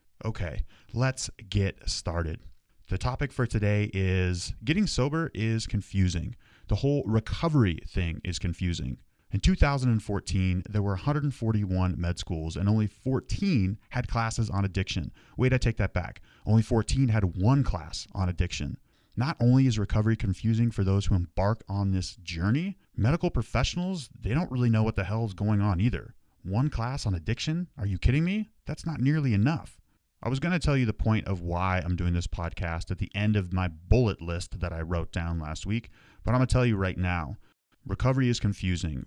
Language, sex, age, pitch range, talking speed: English, male, 30-49, 90-115 Hz, 185 wpm